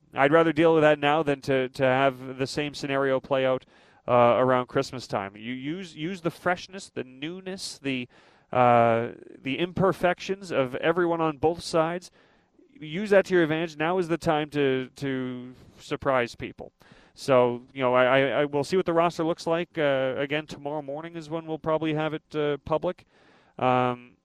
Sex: male